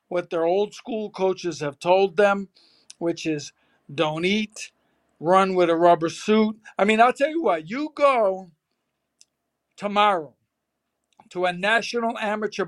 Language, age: English, 60-79